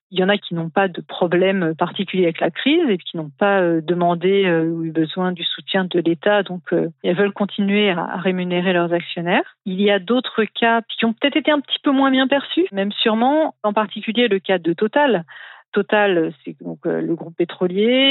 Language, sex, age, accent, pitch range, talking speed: French, female, 40-59, French, 175-220 Hz, 220 wpm